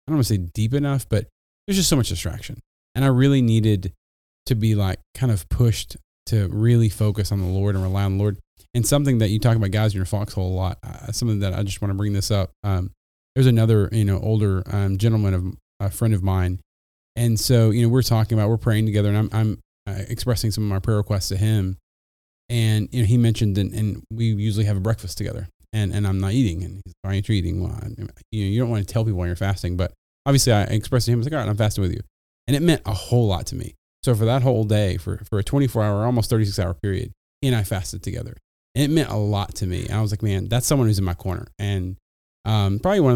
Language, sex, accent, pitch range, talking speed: English, male, American, 95-115 Hz, 265 wpm